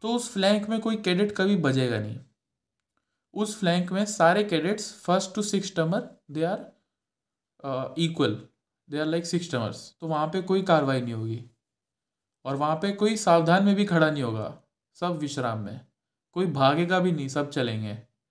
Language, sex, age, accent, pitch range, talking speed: Hindi, male, 20-39, native, 130-180 Hz, 140 wpm